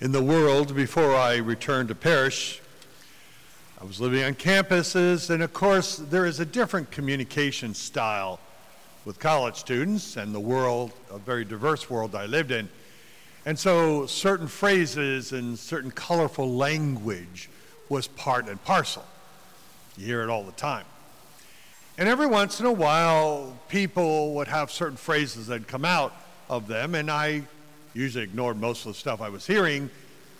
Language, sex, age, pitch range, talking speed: English, male, 60-79, 125-165 Hz, 160 wpm